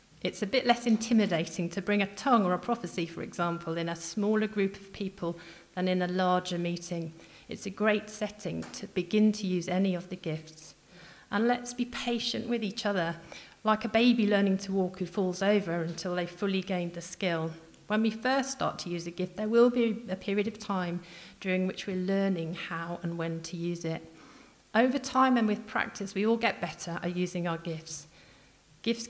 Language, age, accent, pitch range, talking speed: English, 40-59, British, 170-215 Hz, 200 wpm